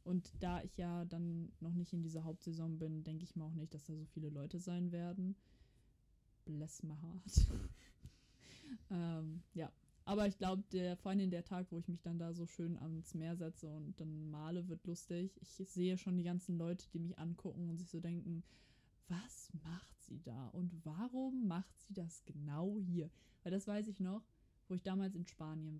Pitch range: 165-185 Hz